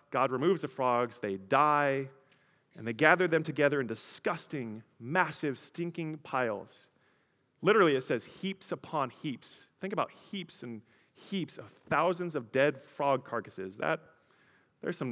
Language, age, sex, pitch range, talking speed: English, 30-49, male, 115-160 Hz, 140 wpm